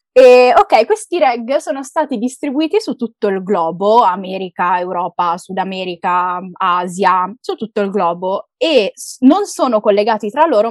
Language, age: Italian, 20-39